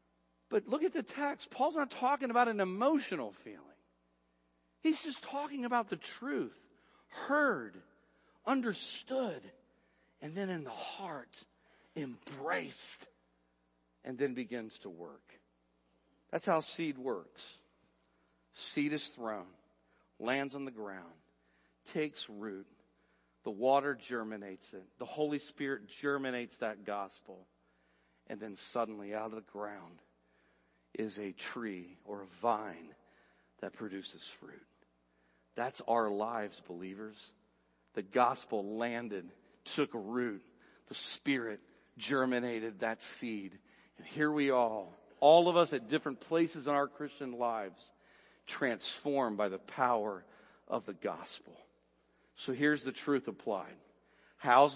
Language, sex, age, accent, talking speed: English, male, 50-69, American, 120 wpm